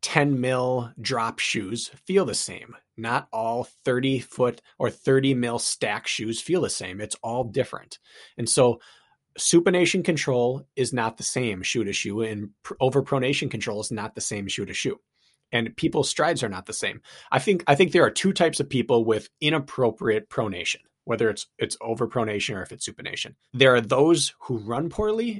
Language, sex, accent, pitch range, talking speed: English, male, American, 115-145 Hz, 185 wpm